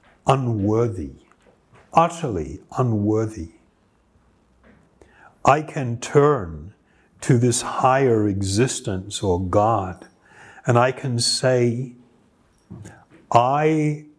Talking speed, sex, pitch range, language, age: 70 wpm, male, 110-145 Hz, English, 60-79